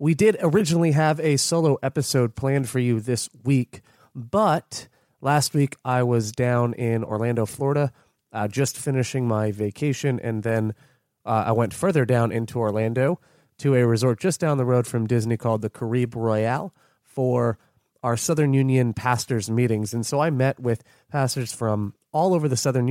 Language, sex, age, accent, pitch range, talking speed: English, male, 30-49, American, 115-140 Hz, 170 wpm